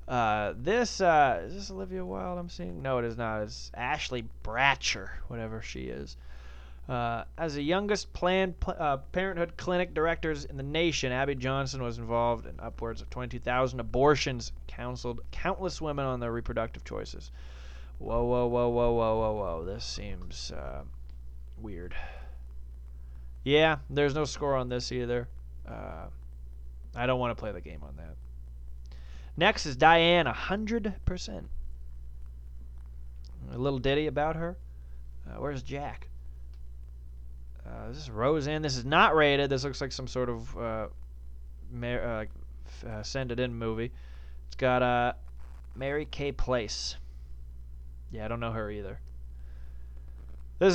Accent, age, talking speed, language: American, 20-39, 150 wpm, English